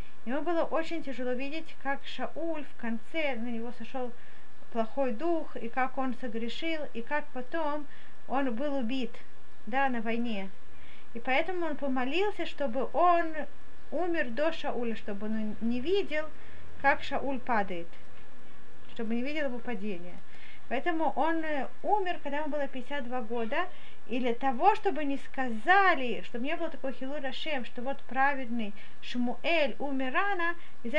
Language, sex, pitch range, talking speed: Russian, female, 245-315 Hz, 140 wpm